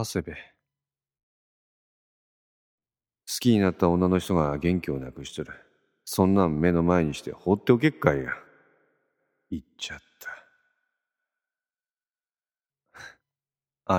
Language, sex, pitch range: Japanese, male, 80-130 Hz